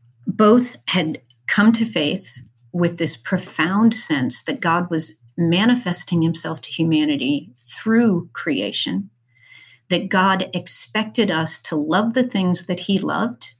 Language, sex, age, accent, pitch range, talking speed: English, female, 50-69, American, 155-195 Hz, 130 wpm